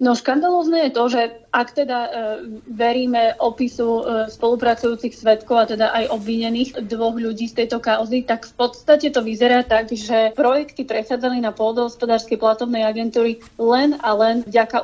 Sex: female